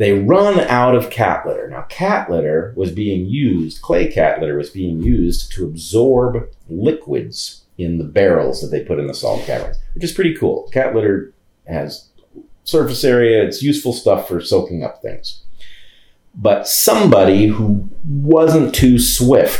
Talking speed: 160 wpm